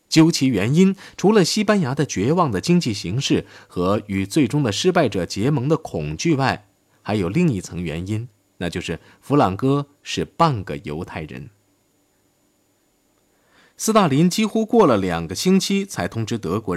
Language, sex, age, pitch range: Chinese, male, 20-39, 95-150 Hz